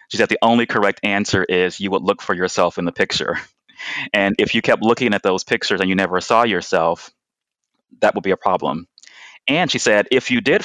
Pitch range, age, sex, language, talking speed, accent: 95-105 Hz, 30-49, male, English, 220 wpm, American